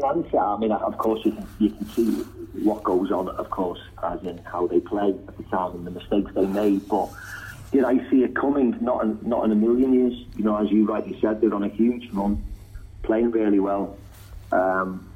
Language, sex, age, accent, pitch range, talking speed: English, male, 40-59, British, 100-110 Hz, 225 wpm